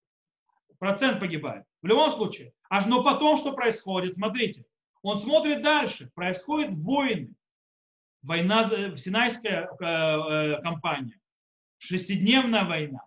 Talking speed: 110 wpm